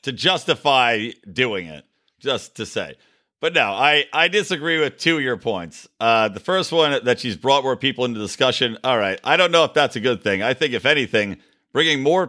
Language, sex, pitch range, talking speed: English, male, 110-140 Hz, 215 wpm